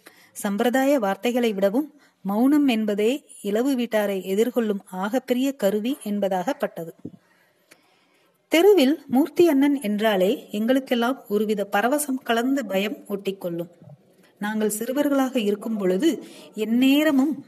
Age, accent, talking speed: 30-49, native, 90 wpm